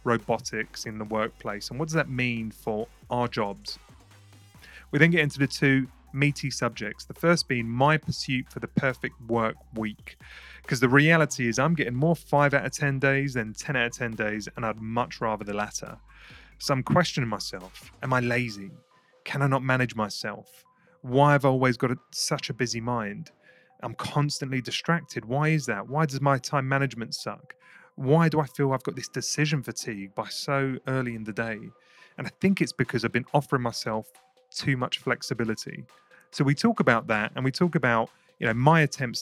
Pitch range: 115-145 Hz